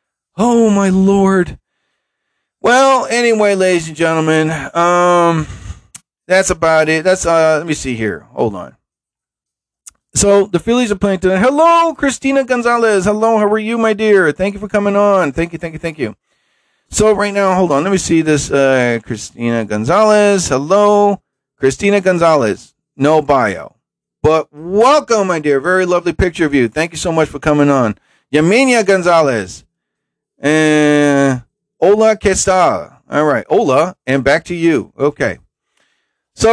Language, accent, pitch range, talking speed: English, American, 140-195 Hz, 155 wpm